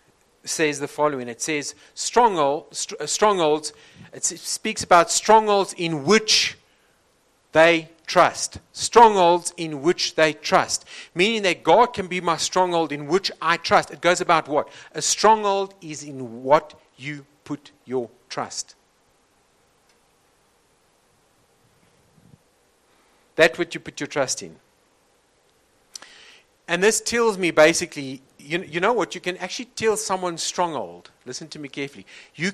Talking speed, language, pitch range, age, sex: 130 wpm, English, 145-185 Hz, 50-69, male